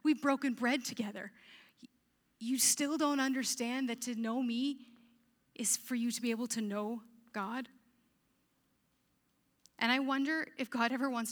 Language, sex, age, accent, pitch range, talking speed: English, female, 30-49, American, 220-280 Hz, 150 wpm